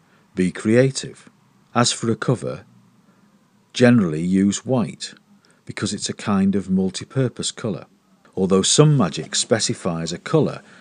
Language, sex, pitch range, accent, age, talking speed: English, male, 100-160 Hz, British, 50-69, 120 wpm